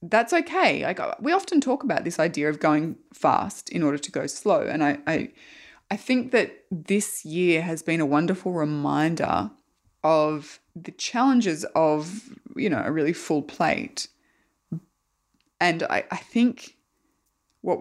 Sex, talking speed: female, 145 wpm